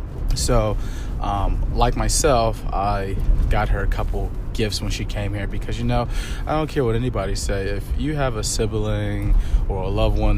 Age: 20-39